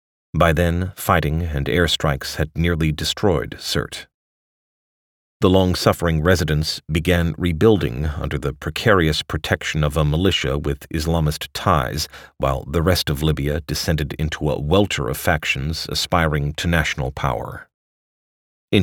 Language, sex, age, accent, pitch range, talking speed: English, male, 40-59, American, 75-90 Hz, 130 wpm